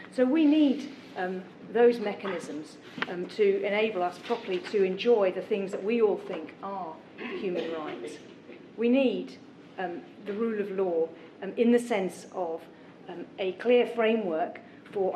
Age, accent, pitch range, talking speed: 40-59, British, 185-235 Hz, 155 wpm